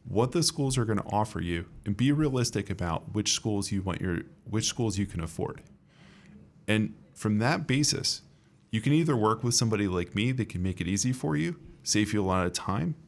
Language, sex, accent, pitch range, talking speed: English, male, American, 100-125 Hz, 210 wpm